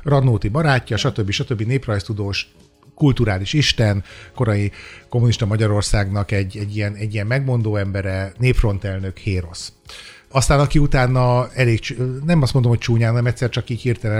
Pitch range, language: 105-130 Hz, Hungarian